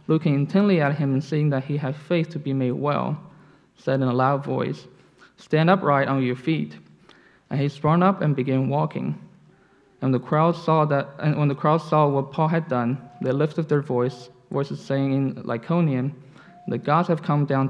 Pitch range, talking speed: 135-155 Hz, 195 wpm